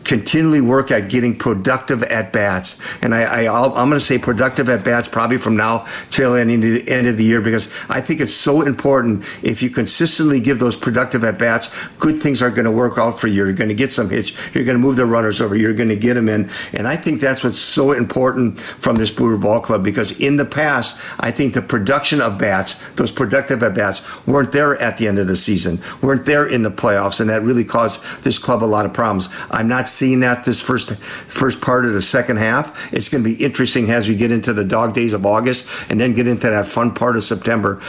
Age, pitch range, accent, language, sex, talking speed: 50-69, 110-130 Hz, American, English, male, 240 wpm